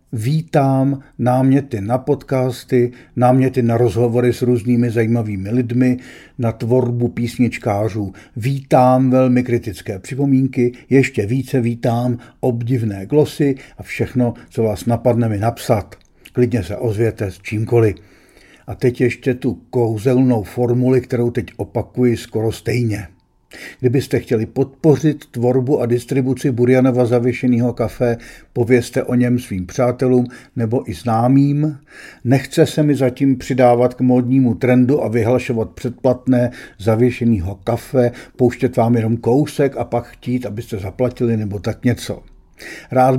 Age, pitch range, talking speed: 50-69, 115-130 Hz, 125 wpm